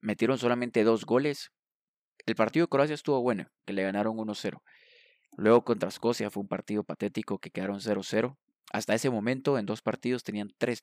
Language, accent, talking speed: Spanish, Mexican, 175 wpm